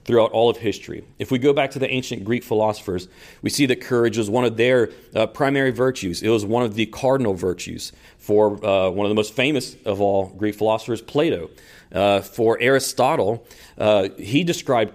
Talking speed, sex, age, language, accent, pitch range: 195 wpm, male, 40-59, English, American, 105-135 Hz